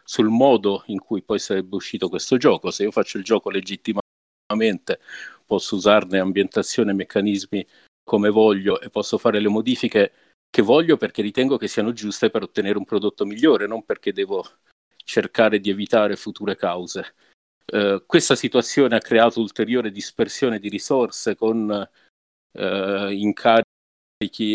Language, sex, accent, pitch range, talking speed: Italian, male, native, 100-115 Hz, 145 wpm